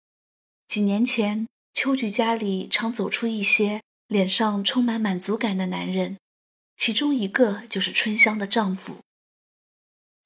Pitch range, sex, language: 190-235 Hz, female, Chinese